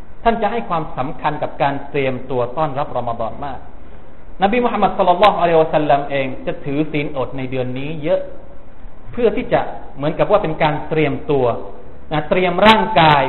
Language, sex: Thai, male